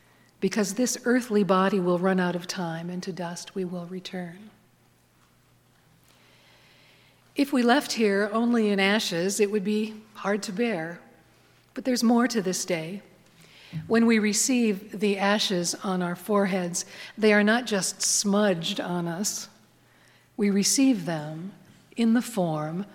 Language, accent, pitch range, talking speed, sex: English, American, 180-215 Hz, 145 wpm, female